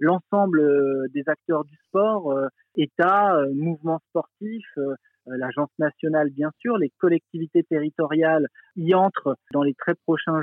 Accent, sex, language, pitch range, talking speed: French, male, French, 145-175 Hz, 120 wpm